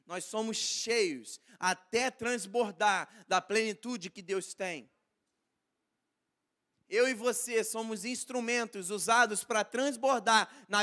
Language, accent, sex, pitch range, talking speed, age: Portuguese, Brazilian, male, 190-250 Hz, 105 wpm, 20-39